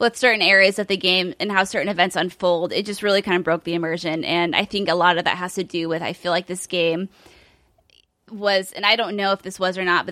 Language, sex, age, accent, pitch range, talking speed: English, female, 20-39, American, 175-205 Hz, 275 wpm